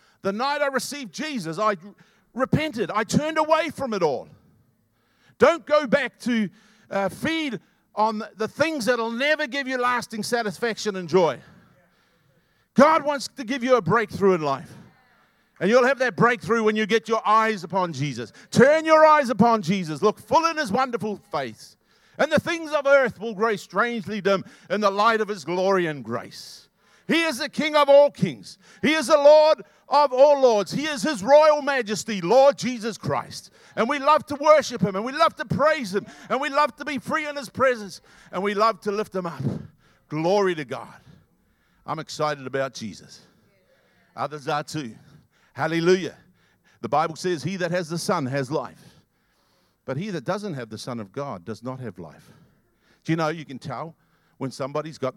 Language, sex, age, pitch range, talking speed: English, male, 50-69, 170-265 Hz, 190 wpm